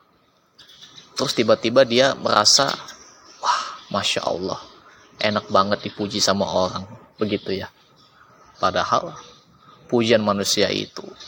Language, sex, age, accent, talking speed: Indonesian, male, 20-39, native, 90 wpm